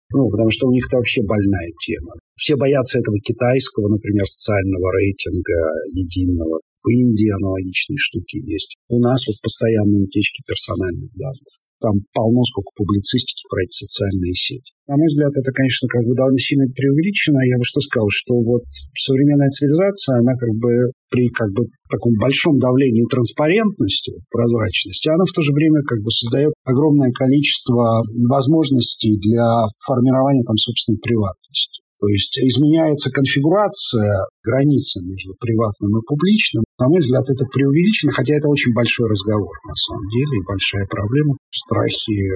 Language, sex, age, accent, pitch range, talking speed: Russian, male, 50-69, native, 105-135 Hz, 150 wpm